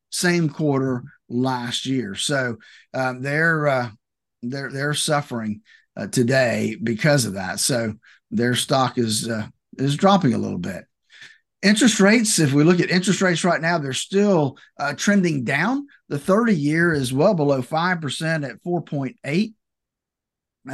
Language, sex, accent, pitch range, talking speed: English, male, American, 130-170 Hz, 150 wpm